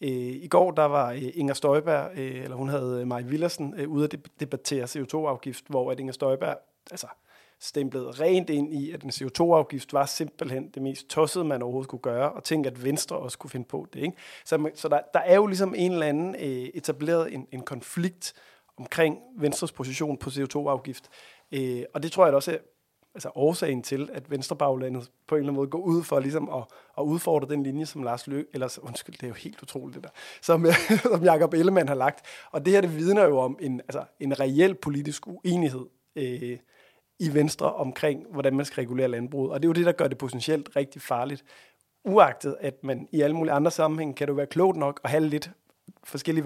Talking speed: 205 wpm